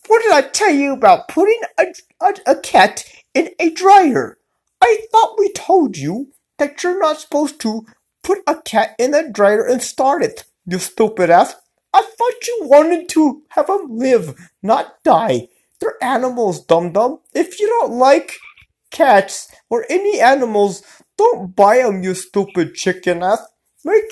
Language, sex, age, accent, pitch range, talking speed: English, male, 30-49, American, 235-335 Hz, 160 wpm